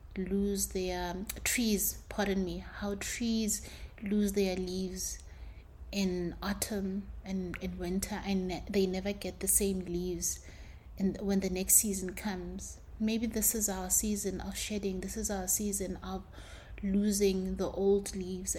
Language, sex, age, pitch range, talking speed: English, female, 30-49, 185-205 Hz, 140 wpm